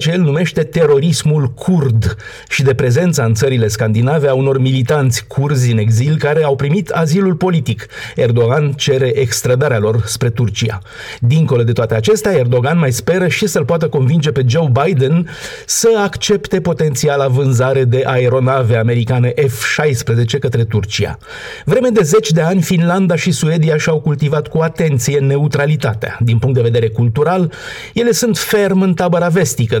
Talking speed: 150 wpm